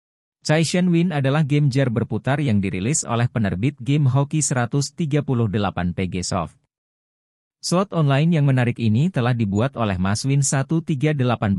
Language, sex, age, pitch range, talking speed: Indonesian, male, 40-59, 105-150 Hz, 130 wpm